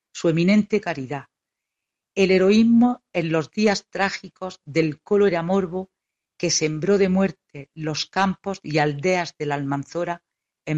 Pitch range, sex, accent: 150-185 Hz, female, Spanish